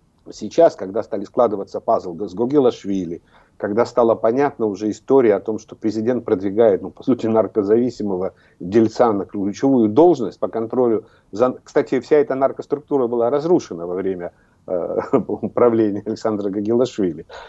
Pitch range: 105-135 Hz